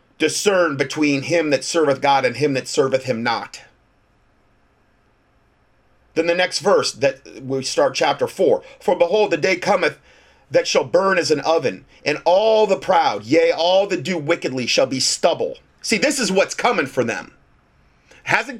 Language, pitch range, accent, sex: English, 140-215 Hz, American, male